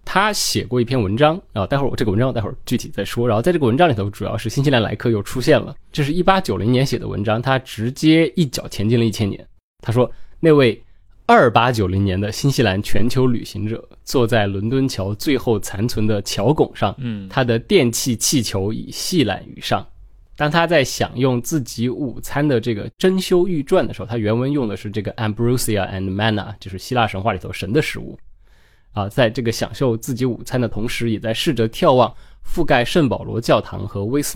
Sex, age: male, 20-39